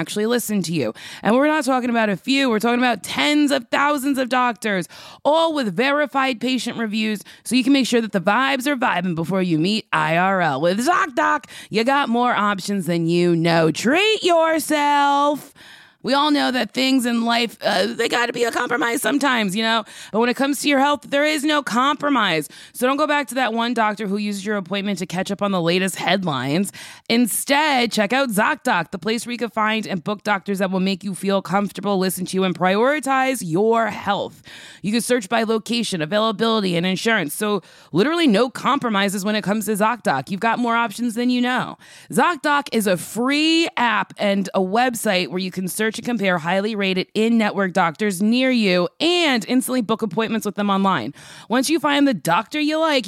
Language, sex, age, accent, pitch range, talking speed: English, female, 20-39, American, 200-265 Hz, 205 wpm